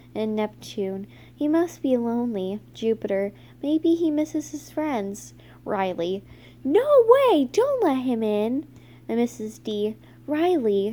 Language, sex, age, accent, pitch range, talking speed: English, female, 10-29, American, 200-250 Hz, 125 wpm